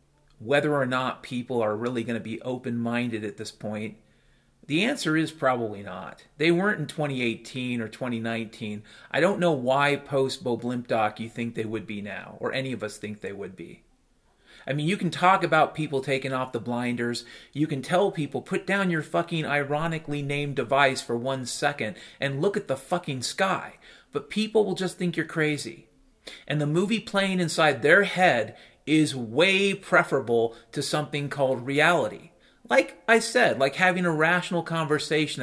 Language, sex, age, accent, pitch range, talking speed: English, male, 40-59, American, 130-185 Hz, 180 wpm